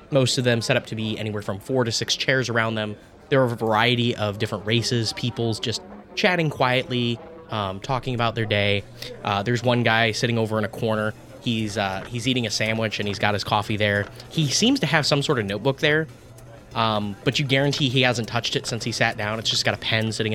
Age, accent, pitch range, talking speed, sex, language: 20-39, American, 105-125 Hz, 235 wpm, male, English